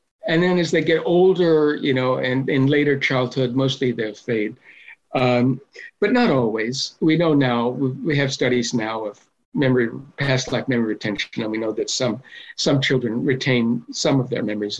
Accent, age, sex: American, 60-79, male